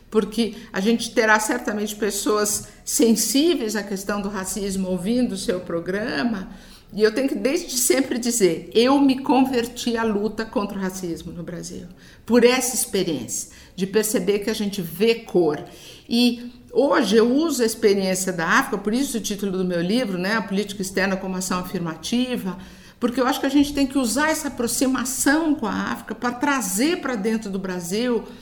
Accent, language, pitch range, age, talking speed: Brazilian, Portuguese, 185-245 Hz, 50-69, 175 wpm